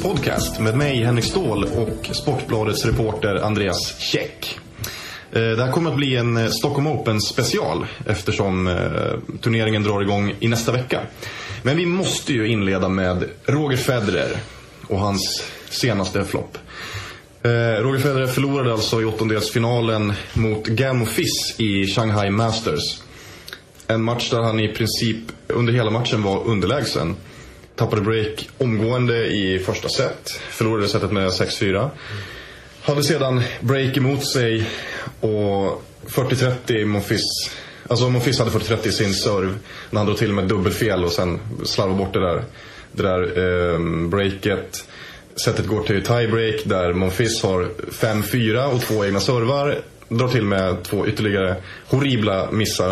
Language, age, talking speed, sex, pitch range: Swedish, 20-39, 135 wpm, male, 100-120 Hz